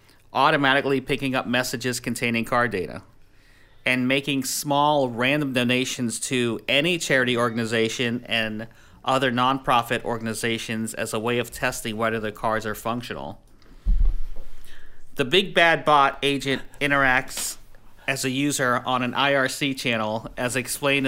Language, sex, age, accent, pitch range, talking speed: English, male, 40-59, American, 115-135 Hz, 130 wpm